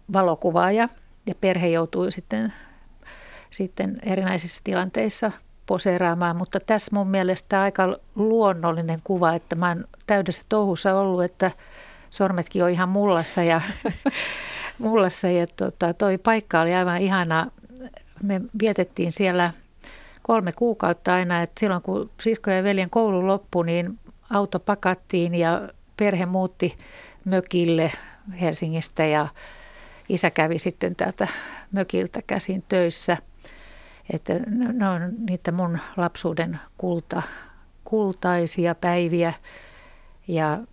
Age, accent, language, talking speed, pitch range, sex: 60-79, native, Finnish, 110 wpm, 170-200 Hz, female